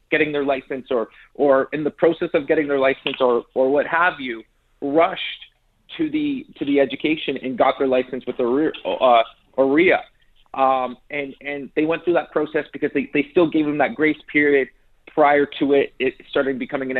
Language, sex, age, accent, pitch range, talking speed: English, male, 30-49, American, 135-165 Hz, 195 wpm